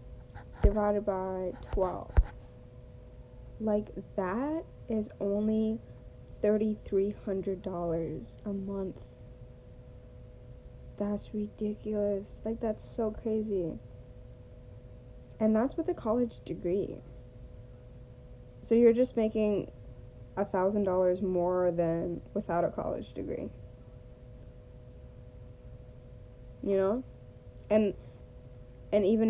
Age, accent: 20-39, American